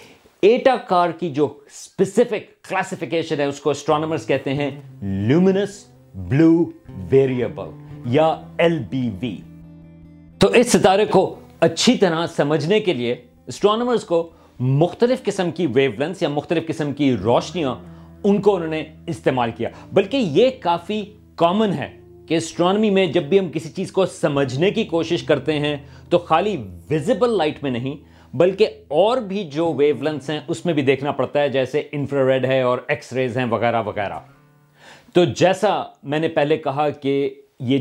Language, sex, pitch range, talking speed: Urdu, male, 135-175 Hz, 155 wpm